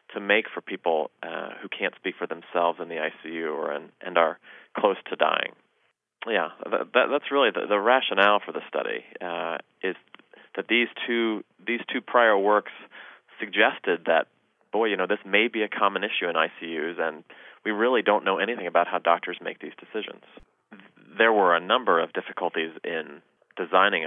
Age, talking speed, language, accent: 30-49, 180 wpm, English, American